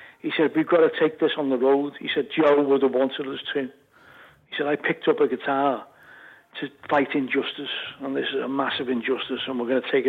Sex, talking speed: male, 230 wpm